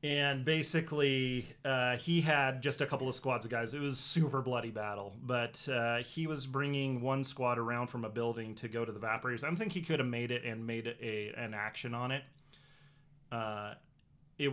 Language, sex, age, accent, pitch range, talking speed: English, male, 30-49, American, 110-140 Hz, 210 wpm